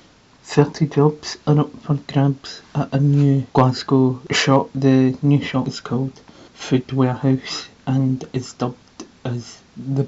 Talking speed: 135 wpm